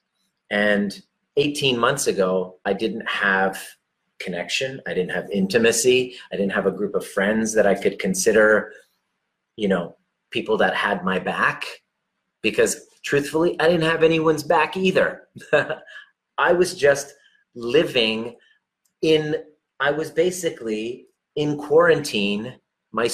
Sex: male